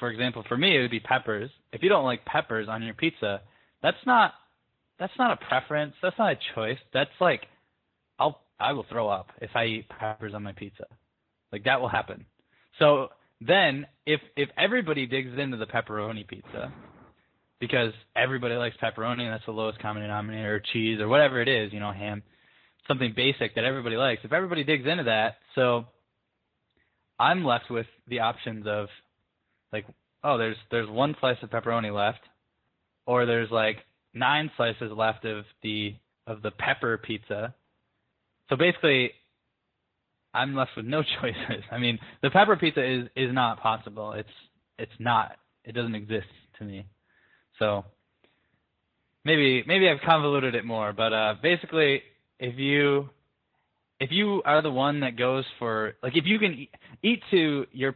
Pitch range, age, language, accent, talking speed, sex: 110-140 Hz, 20-39, English, American, 170 wpm, male